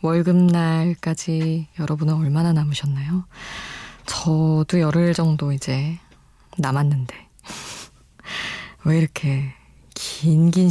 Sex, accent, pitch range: female, native, 150-195 Hz